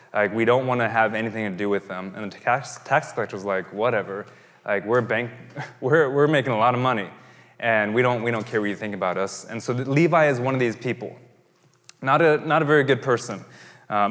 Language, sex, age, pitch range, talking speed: English, male, 20-39, 115-160 Hz, 240 wpm